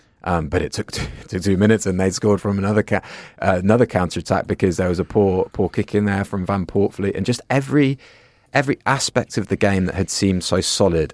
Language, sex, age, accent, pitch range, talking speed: English, male, 30-49, British, 85-105 Hz, 220 wpm